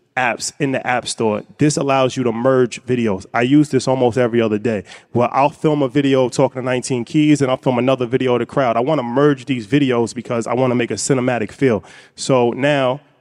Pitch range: 125-150 Hz